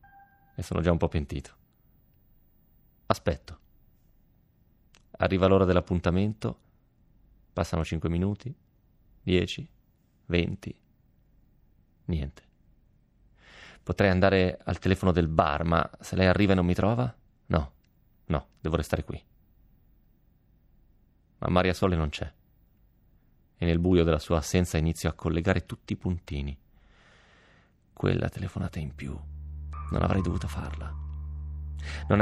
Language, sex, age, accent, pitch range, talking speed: Italian, male, 30-49, native, 75-100 Hz, 115 wpm